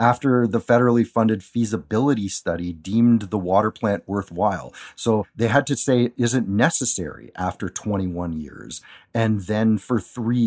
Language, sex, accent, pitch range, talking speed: English, male, American, 95-115 Hz, 150 wpm